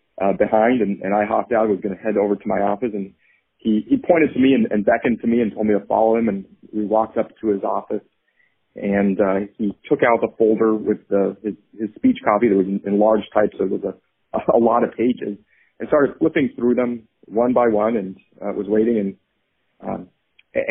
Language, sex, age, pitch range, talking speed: English, male, 30-49, 100-125 Hz, 230 wpm